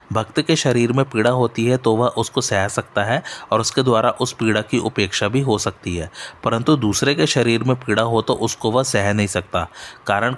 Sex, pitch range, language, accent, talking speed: male, 105-130 Hz, Hindi, native, 220 wpm